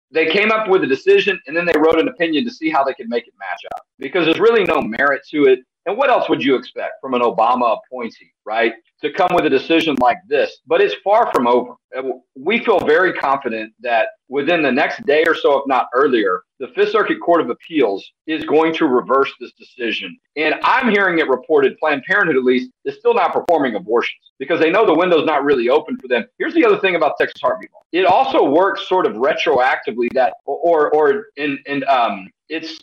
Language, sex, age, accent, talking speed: English, male, 40-59, American, 220 wpm